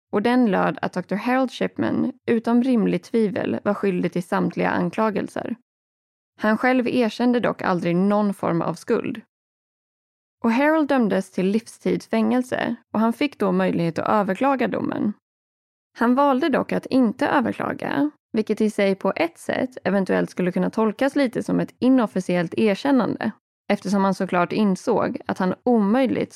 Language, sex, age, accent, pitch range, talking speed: Swedish, female, 20-39, native, 190-250 Hz, 150 wpm